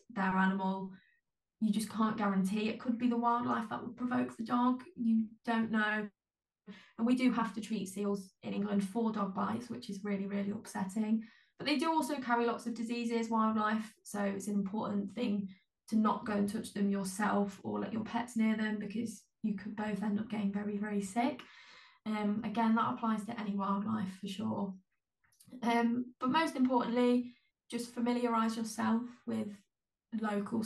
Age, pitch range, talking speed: 20-39, 210-235 Hz, 180 wpm